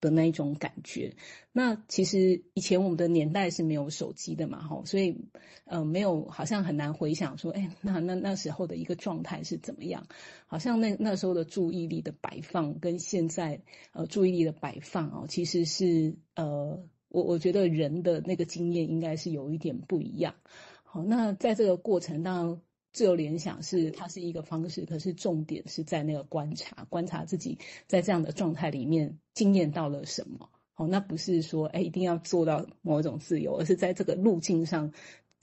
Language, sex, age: Chinese, female, 30-49